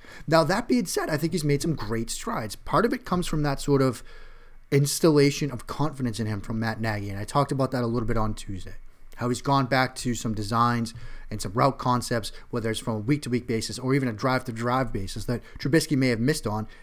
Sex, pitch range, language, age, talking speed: male, 120-155 Hz, English, 30-49, 230 wpm